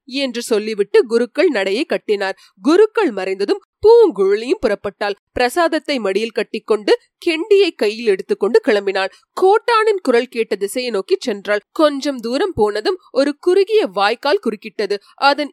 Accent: native